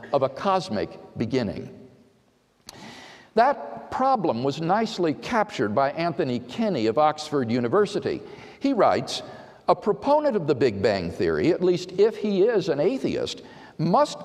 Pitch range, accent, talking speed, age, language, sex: 165-240 Hz, American, 135 wpm, 50-69, English, male